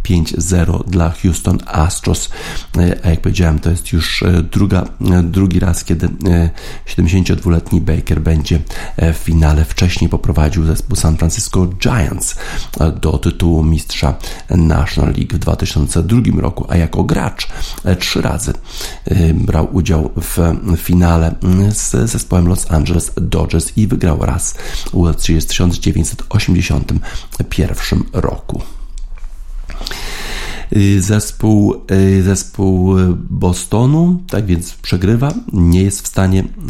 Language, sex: Polish, male